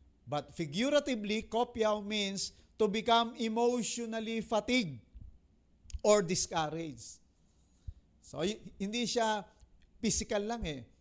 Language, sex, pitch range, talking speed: English, male, 155-205 Hz, 85 wpm